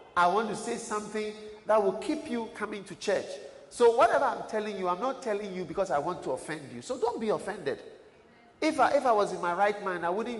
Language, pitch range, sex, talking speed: English, 140-220 Hz, male, 240 wpm